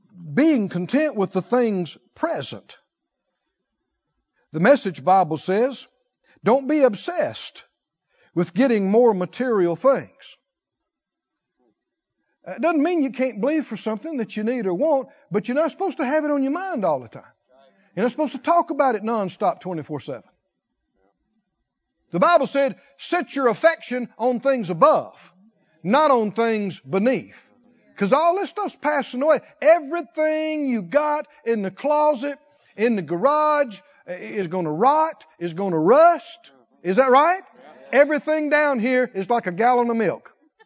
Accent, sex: American, male